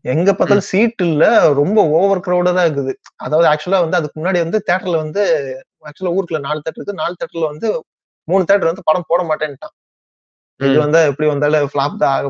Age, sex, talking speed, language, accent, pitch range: 20-39, male, 175 wpm, Tamil, native, 145-175 Hz